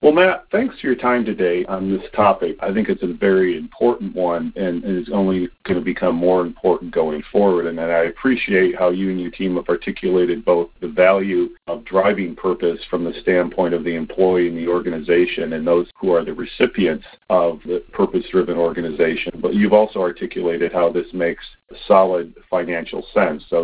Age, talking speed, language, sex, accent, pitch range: 40-59, 185 wpm, English, male, American, 85-95 Hz